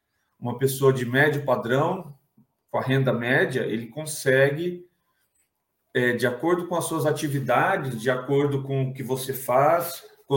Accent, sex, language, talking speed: Brazilian, male, Portuguese, 145 wpm